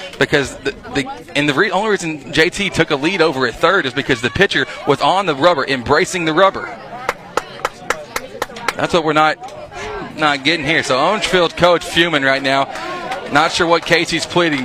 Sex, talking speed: male, 175 wpm